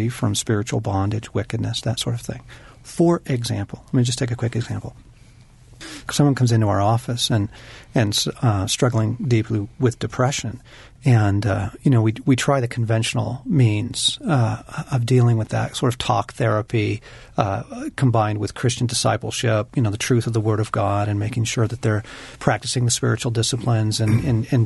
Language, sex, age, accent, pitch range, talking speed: English, male, 40-59, American, 110-130 Hz, 180 wpm